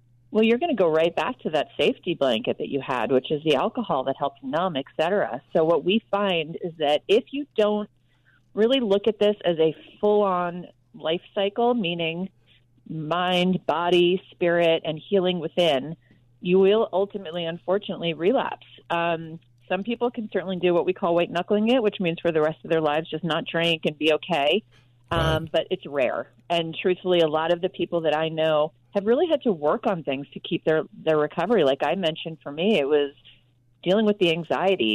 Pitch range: 150-190 Hz